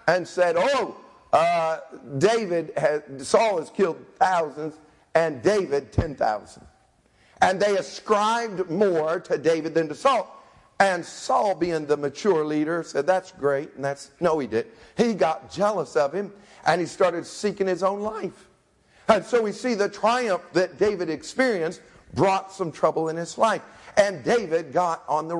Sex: male